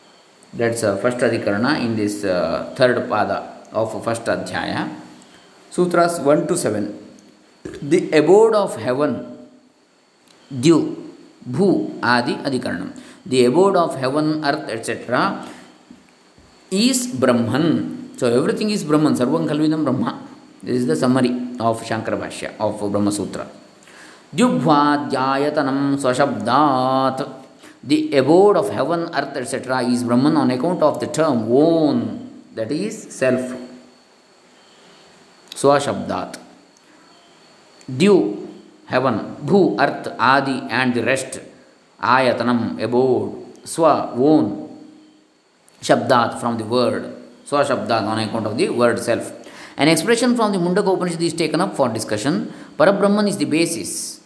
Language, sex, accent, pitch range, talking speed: English, male, Indian, 120-190 Hz, 120 wpm